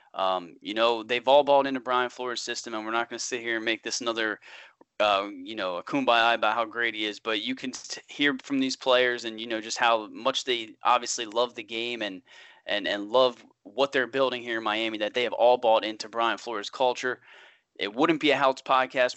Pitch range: 115-130 Hz